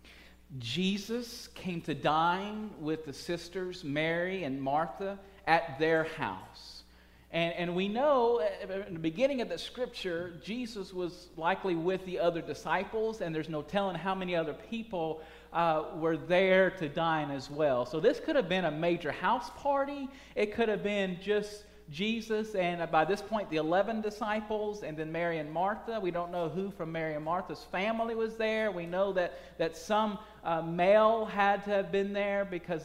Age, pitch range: 40-59, 150-200 Hz